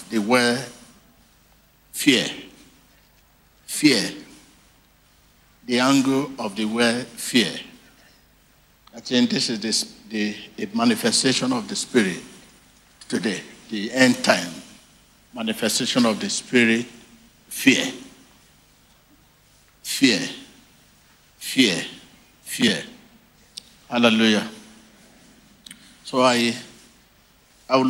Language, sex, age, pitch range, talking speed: English, male, 60-79, 120-200 Hz, 80 wpm